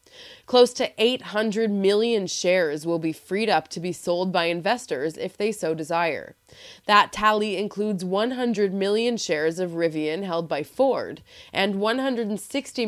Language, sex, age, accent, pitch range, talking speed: English, female, 20-39, American, 165-220 Hz, 145 wpm